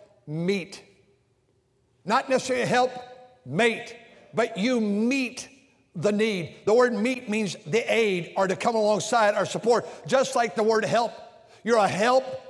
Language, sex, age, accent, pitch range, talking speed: English, male, 60-79, American, 210-265 Hz, 150 wpm